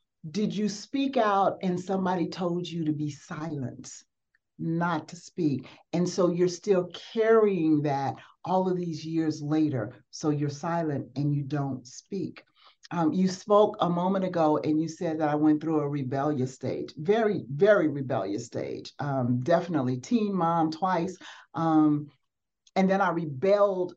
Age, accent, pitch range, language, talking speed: 50-69, American, 150-185 Hz, English, 155 wpm